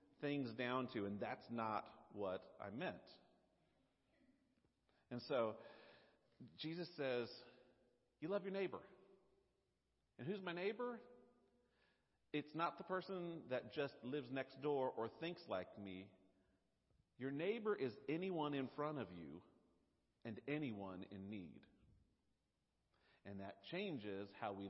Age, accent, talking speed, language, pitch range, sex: 50-69, American, 125 wpm, English, 100-155 Hz, male